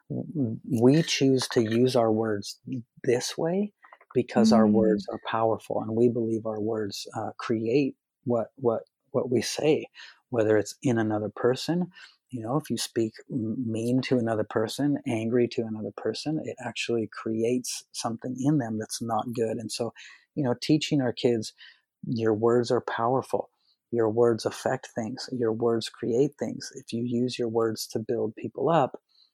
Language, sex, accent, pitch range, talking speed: English, male, American, 115-130 Hz, 165 wpm